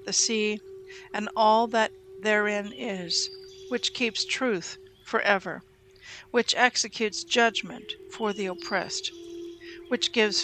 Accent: American